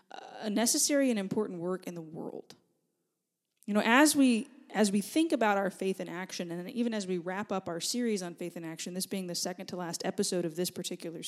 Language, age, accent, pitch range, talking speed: English, 20-39, American, 180-235 Hz, 225 wpm